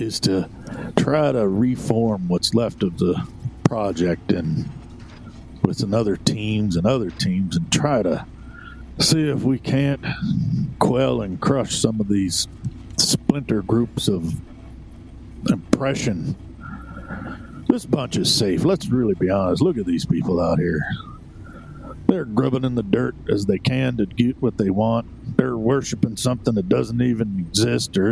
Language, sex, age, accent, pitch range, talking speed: English, male, 50-69, American, 100-135 Hz, 145 wpm